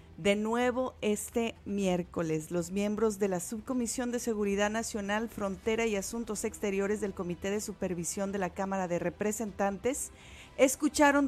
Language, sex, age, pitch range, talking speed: Spanish, female, 40-59, 195-235 Hz, 140 wpm